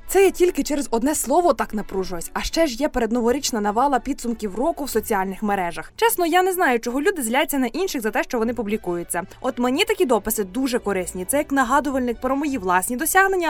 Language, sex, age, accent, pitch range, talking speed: Ukrainian, female, 20-39, native, 220-305 Hz, 205 wpm